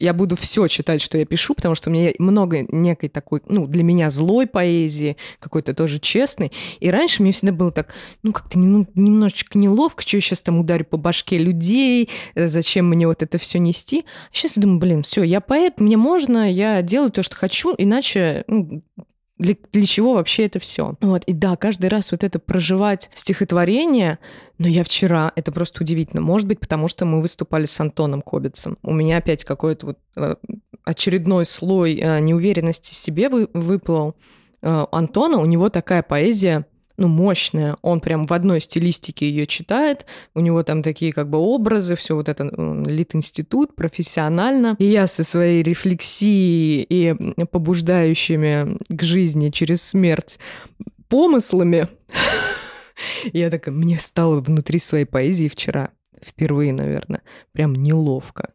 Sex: female